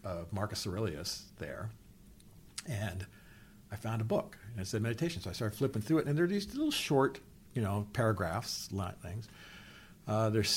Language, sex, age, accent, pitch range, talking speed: English, male, 50-69, American, 90-115 Hz, 180 wpm